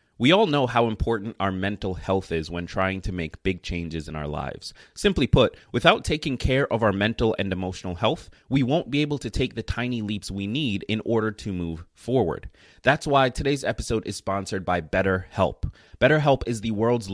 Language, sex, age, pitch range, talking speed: English, male, 30-49, 95-125 Hz, 200 wpm